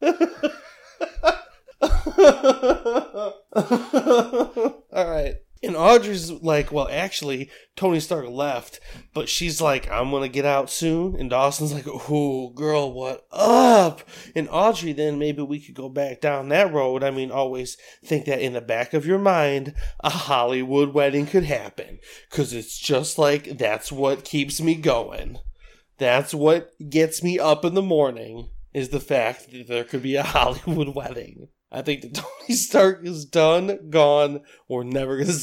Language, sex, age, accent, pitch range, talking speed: English, male, 20-39, American, 135-190 Hz, 150 wpm